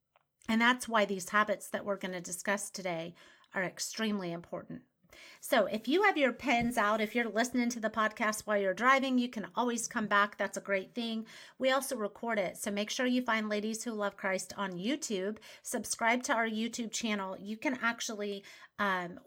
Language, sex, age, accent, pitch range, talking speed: English, female, 30-49, American, 195-245 Hz, 195 wpm